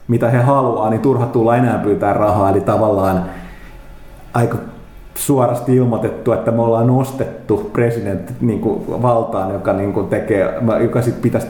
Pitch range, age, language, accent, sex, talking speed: 100-125 Hz, 30-49, Finnish, native, male, 125 wpm